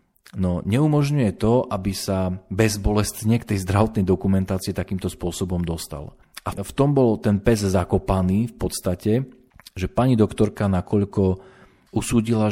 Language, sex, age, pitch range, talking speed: Slovak, male, 40-59, 95-115 Hz, 135 wpm